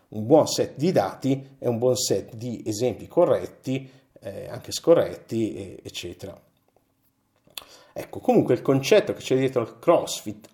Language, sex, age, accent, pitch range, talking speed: Italian, male, 50-69, native, 120-135 Hz, 140 wpm